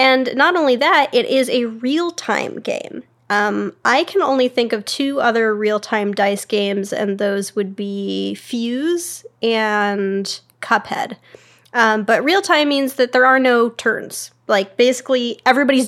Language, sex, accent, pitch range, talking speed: English, female, American, 215-265 Hz, 145 wpm